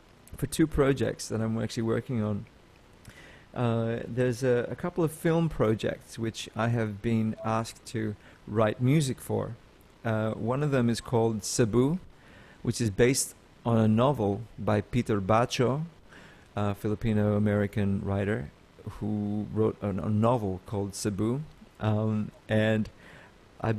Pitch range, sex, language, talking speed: 105-120 Hz, male, English, 130 wpm